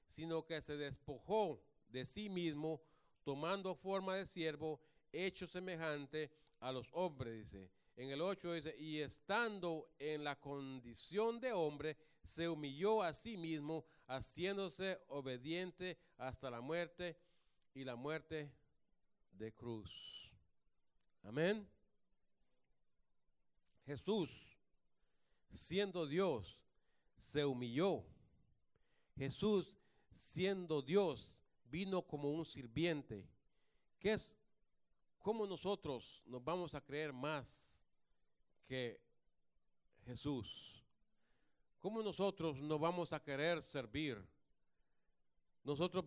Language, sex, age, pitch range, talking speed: English, male, 40-59, 125-175 Hz, 100 wpm